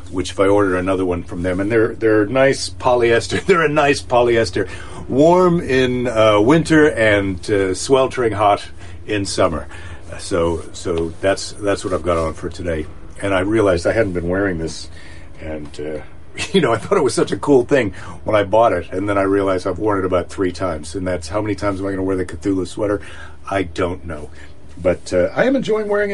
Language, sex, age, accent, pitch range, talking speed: English, male, 50-69, American, 90-120 Hz, 215 wpm